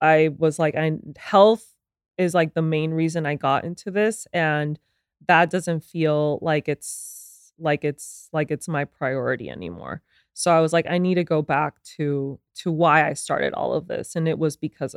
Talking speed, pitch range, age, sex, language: 190 wpm, 150-180 Hz, 20-39, female, English